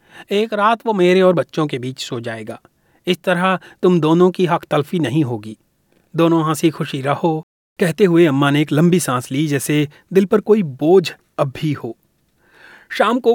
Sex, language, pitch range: male, Hindi, 140-180 Hz